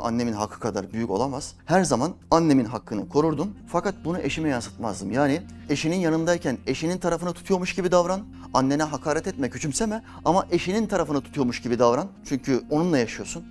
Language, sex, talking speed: Turkish, male, 155 wpm